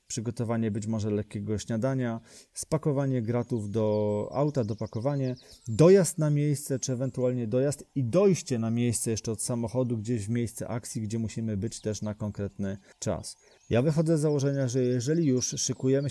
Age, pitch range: 30-49, 110-130 Hz